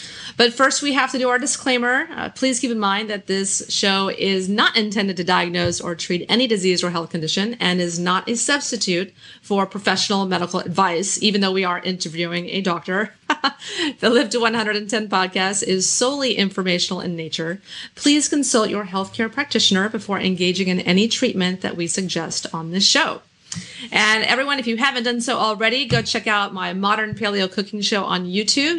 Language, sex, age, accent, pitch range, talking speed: English, female, 30-49, American, 185-230 Hz, 185 wpm